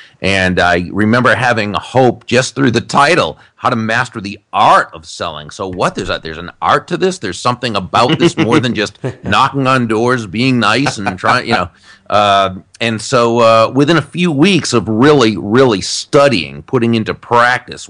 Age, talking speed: 40-59, 190 wpm